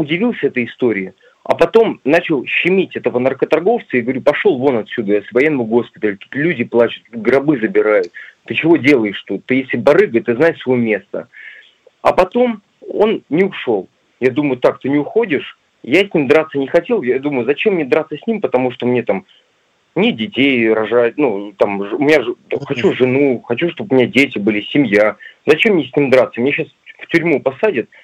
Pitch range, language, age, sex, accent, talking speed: 120-175 Hz, Russian, 30-49, male, native, 185 wpm